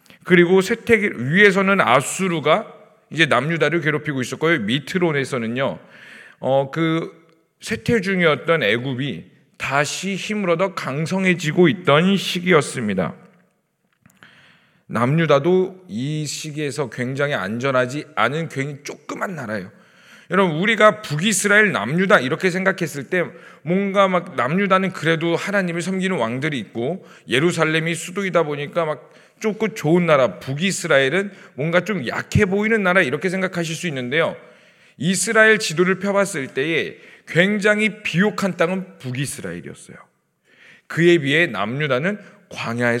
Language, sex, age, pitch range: Korean, male, 40-59, 150-195 Hz